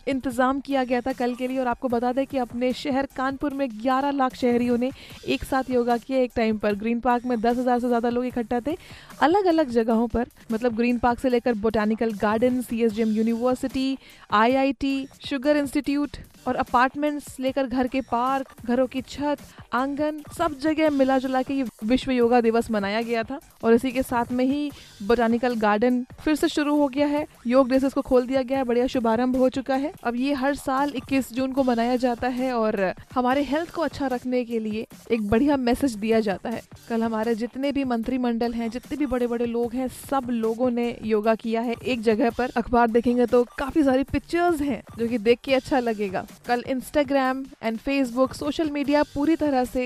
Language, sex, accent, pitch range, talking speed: Hindi, female, native, 235-270 Hz, 205 wpm